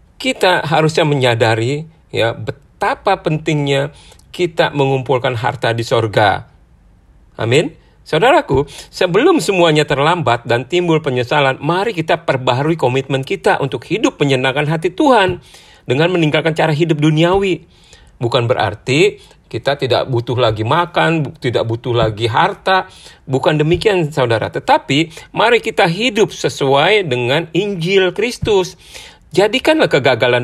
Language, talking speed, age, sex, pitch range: Indonesian, 115 wpm, 40-59, male, 115-165 Hz